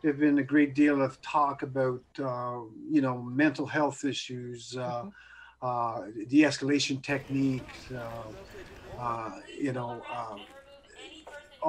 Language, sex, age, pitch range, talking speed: English, male, 50-69, 140-190 Hz, 120 wpm